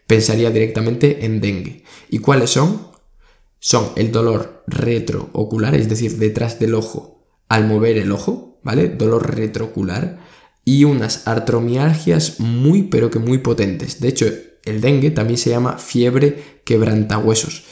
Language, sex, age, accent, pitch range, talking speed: Spanish, male, 20-39, Spanish, 110-130 Hz, 135 wpm